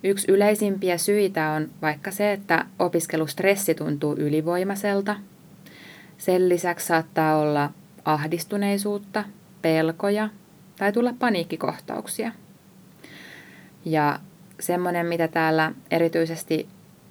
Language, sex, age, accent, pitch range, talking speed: Finnish, female, 20-39, native, 160-195 Hz, 85 wpm